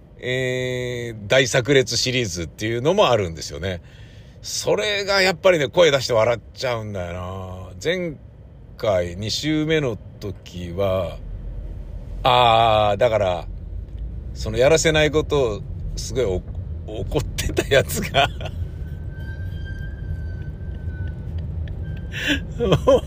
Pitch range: 95-155 Hz